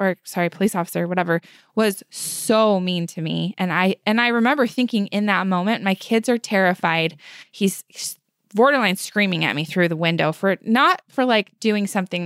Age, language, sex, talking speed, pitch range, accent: 20-39, English, female, 185 wpm, 175-210 Hz, American